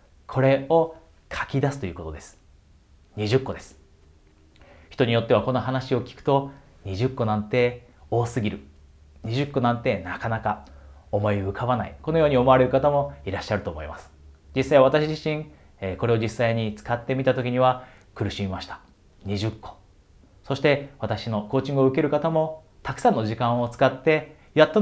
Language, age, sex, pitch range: Japanese, 30-49, male, 85-135 Hz